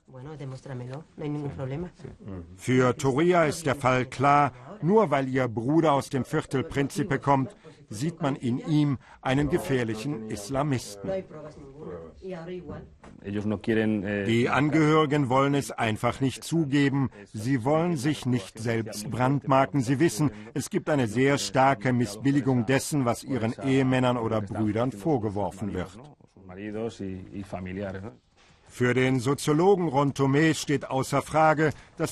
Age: 50-69